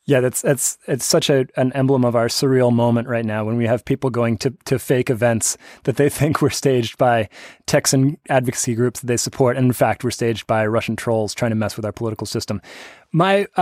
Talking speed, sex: 225 wpm, male